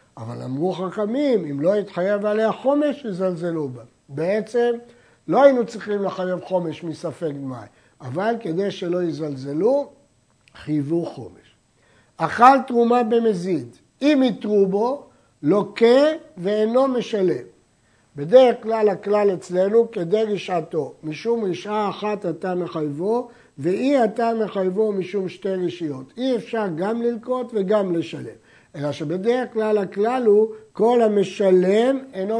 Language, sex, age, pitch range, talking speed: Hebrew, male, 60-79, 170-225 Hz, 120 wpm